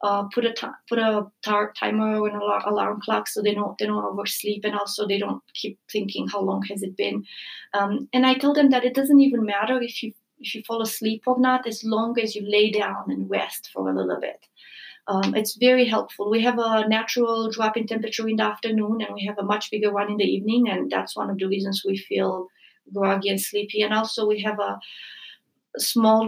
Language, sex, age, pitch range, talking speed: English, female, 30-49, 200-235 Hz, 230 wpm